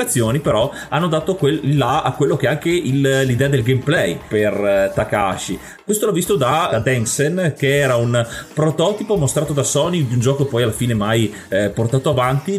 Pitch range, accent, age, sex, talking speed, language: 115-145 Hz, native, 30-49, male, 195 wpm, Italian